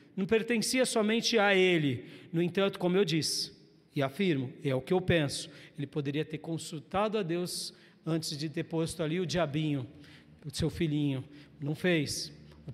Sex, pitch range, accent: male, 145-185 Hz, Brazilian